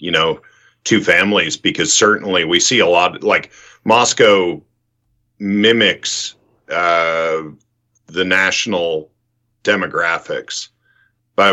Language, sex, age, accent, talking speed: English, male, 50-69, American, 95 wpm